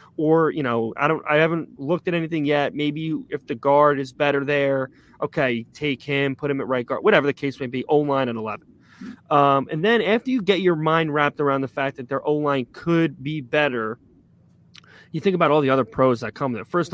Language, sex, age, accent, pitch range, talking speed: English, male, 20-39, American, 135-165 Hz, 230 wpm